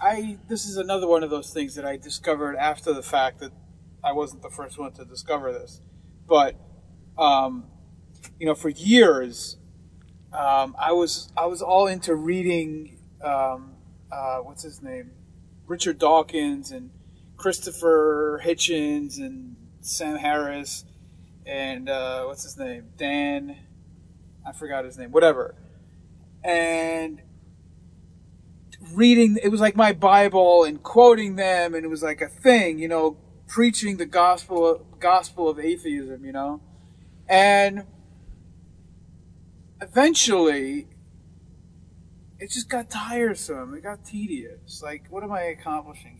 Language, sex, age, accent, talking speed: English, male, 30-49, American, 130 wpm